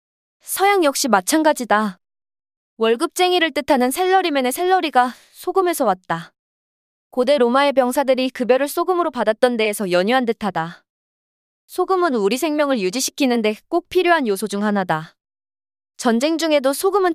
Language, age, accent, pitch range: Korean, 20-39, native, 215-330 Hz